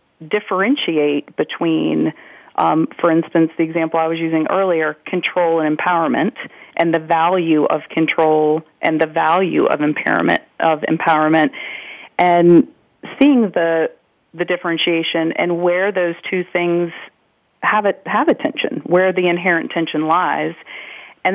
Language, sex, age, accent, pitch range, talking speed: English, female, 40-59, American, 160-180 Hz, 130 wpm